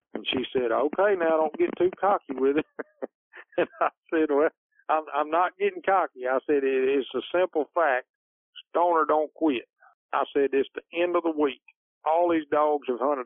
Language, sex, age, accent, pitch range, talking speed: English, male, 50-69, American, 130-160 Hz, 190 wpm